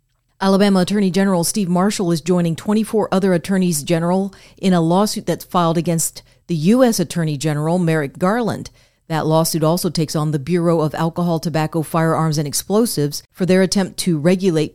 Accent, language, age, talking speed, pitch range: American, English, 40-59, 165 wpm, 155-185 Hz